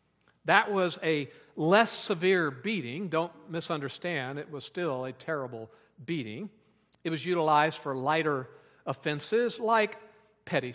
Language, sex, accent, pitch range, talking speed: English, male, American, 135-185 Hz, 125 wpm